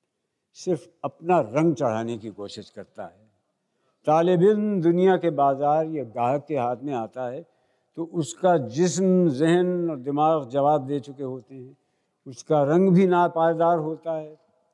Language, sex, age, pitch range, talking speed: Hindi, male, 60-79, 135-180 Hz, 145 wpm